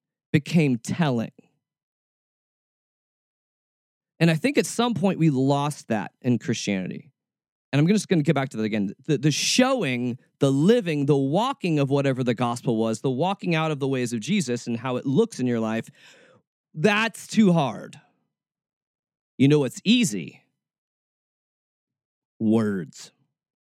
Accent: American